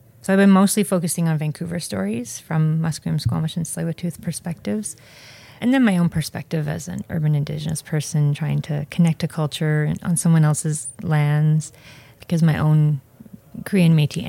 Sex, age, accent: female, 30-49, American